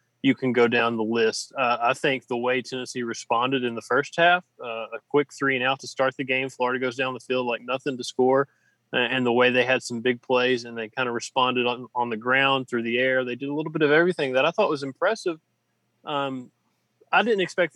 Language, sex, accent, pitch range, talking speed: English, male, American, 120-145 Hz, 245 wpm